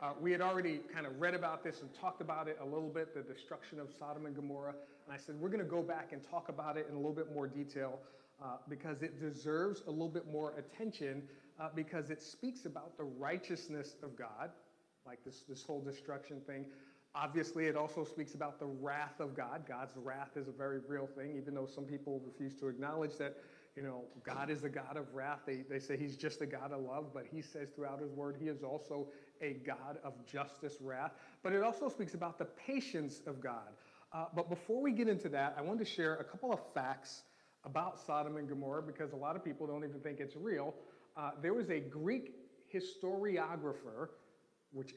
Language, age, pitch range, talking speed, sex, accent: English, 40-59, 140-165 Hz, 220 wpm, male, American